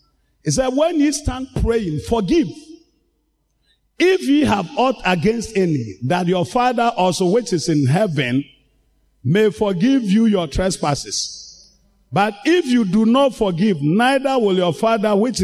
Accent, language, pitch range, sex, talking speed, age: Nigerian, English, 160-255 Hz, male, 145 wpm, 50-69